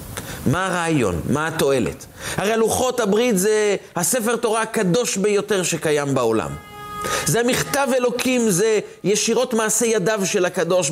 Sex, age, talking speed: male, 40-59, 125 wpm